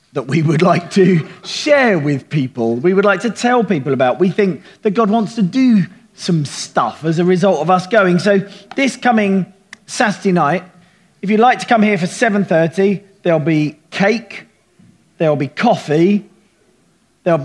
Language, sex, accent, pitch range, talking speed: English, male, British, 155-205 Hz, 170 wpm